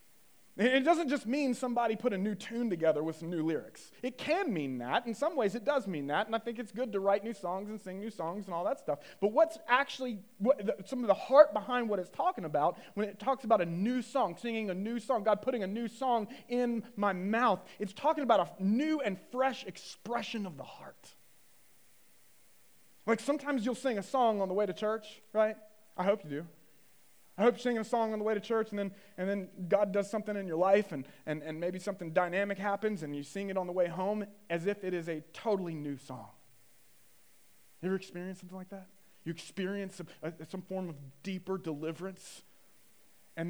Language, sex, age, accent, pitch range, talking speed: English, male, 30-49, American, 175-230 Hz, 220 wpm